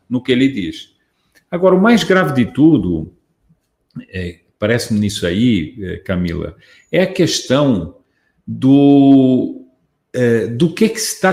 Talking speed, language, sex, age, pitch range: 120 wpm, Portuguese, male, 50-69, 130-195 Hz